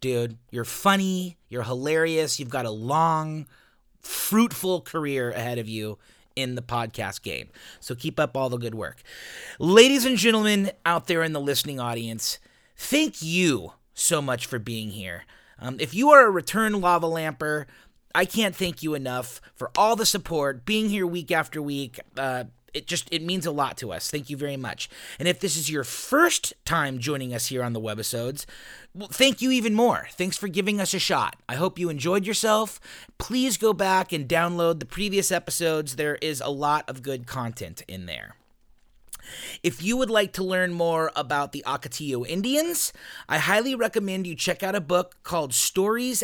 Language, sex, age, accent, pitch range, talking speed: English, male, 30-49, American, 130-185 Hz, 185 wpm